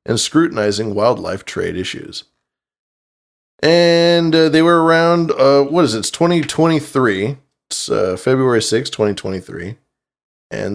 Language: English